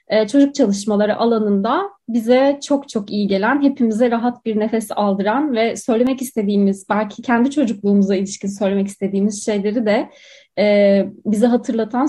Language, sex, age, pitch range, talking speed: Turkish, female, 30-49, 210-285 Hz, 135 wpm